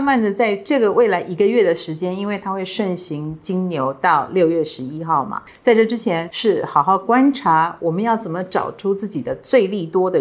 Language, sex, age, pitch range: Chinese, female, 50-69, 165-215 Hz